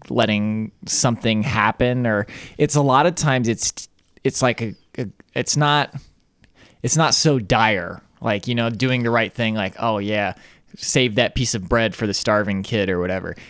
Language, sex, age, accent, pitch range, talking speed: English, male, 20-39, American, 105-125 Hz, 180 wpm